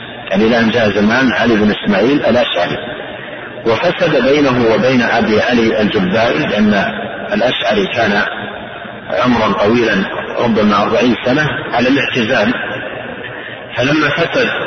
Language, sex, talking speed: Arabic, male, 105 wpm